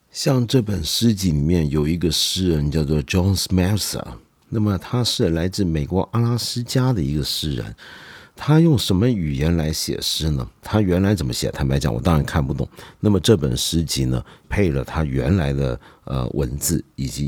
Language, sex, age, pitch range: Chinese, male, 50-69, 75-110 Hz